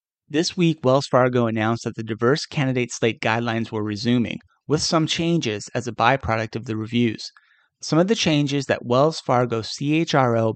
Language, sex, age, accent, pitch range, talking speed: English, male, 30-49, American, 115-140 Hz, 170 wpm